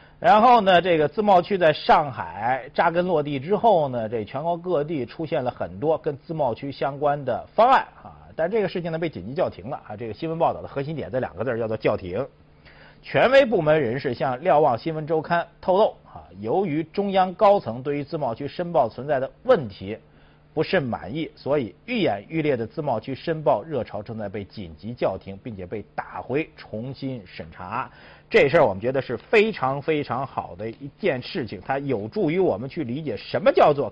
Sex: male